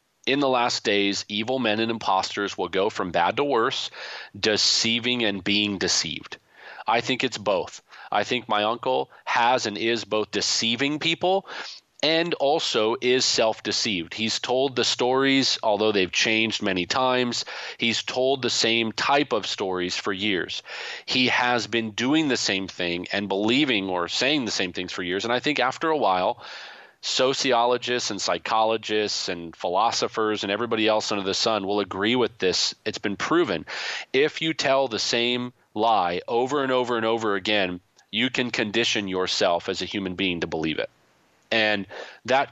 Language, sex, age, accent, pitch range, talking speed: English, male, 30-49, American, 100-125 Hz, 170 wpm